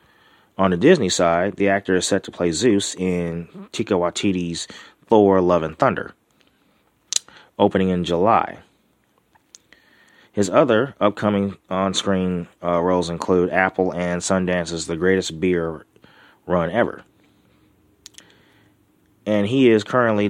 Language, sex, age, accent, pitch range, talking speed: English, male, 30-49, American, 90-105 Hz, 120 wpm